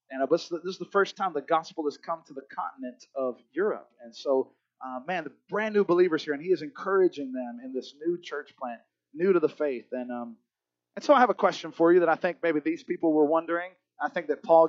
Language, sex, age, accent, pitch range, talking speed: English, male, 30-49, American, 125-190 Hz, 245 wpm